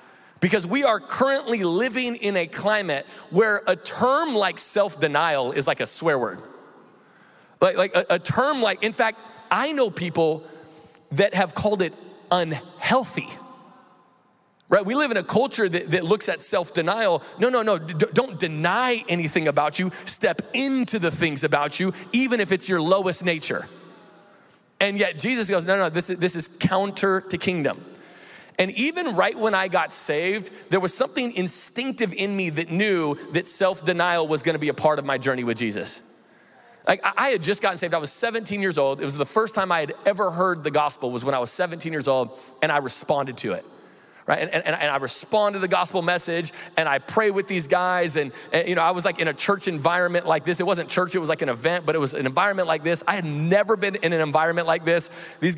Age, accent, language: 30-49, American, English